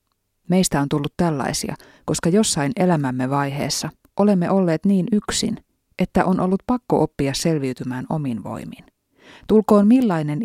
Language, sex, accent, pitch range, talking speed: Finnish, female, native, 140-190 Hz, 125 wpm